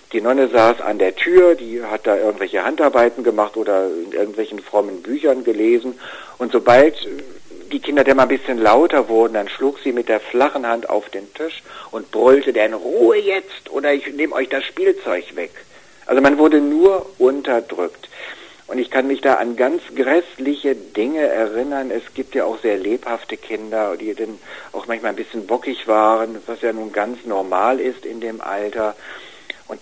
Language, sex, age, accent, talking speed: German, male, 60-79, German, 180 wpm